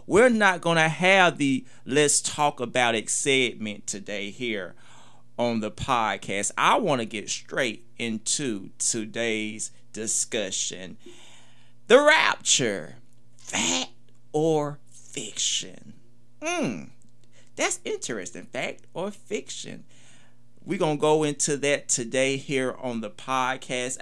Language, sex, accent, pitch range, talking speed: English, male, American, 115-140 Hz, 110 wpm